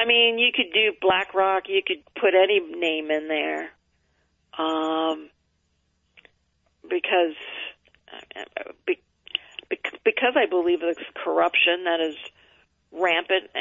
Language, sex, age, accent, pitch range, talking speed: English, female, 50-69, American, 170-220 Hz, 110 wpm